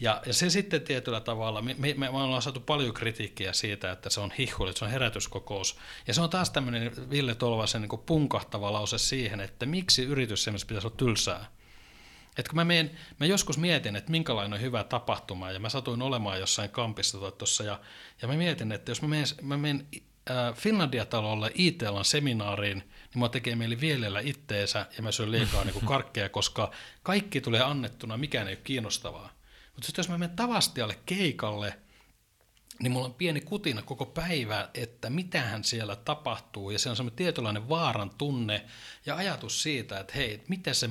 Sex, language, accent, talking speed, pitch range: male, Finnish, native, 175 wpm, 105-150 Hz